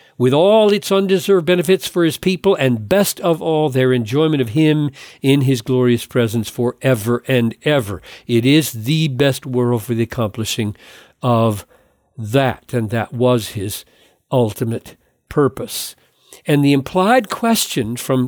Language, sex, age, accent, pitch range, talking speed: English, male, 50-69, American, 125-185 Hz, 145 wpm